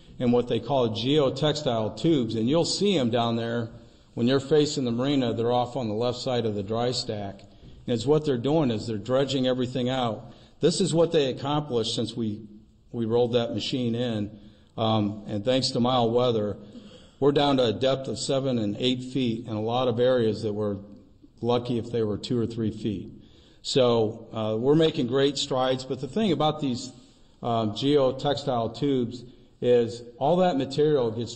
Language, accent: English, American